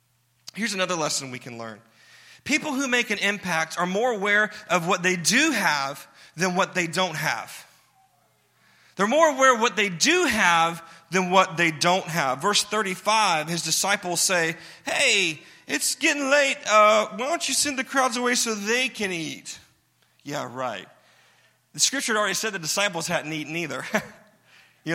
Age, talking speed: 30-49, 175 wpm